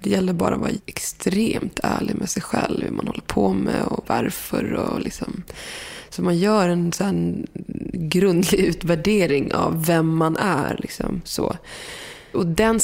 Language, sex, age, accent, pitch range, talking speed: English, female, 20-39, Swedish, 170-205 Hz, 150 wpm